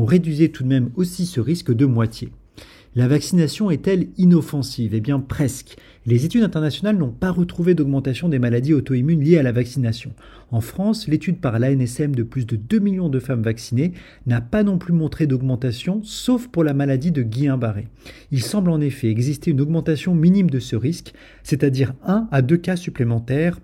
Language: French